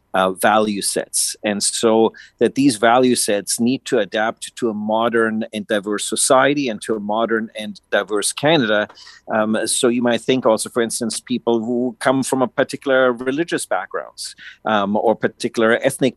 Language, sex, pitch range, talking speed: English, male, 105-125 Hz, 165 wpm